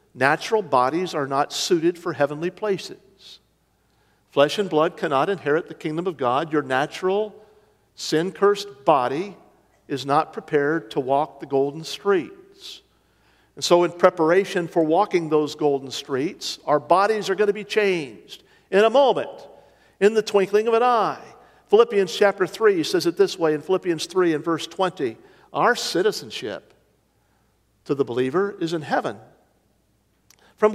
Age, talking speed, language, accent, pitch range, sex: 50-69, 150 wpm, English, American, 160-220 Hz, male